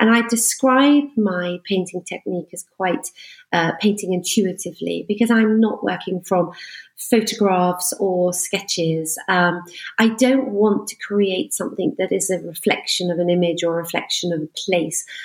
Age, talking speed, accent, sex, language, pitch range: 40-59, 155 wpm, British, female, English, 175-225 Hz